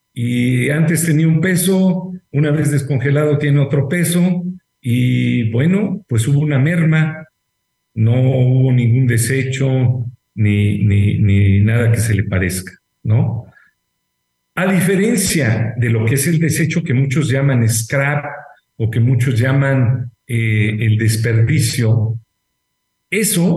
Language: Spanish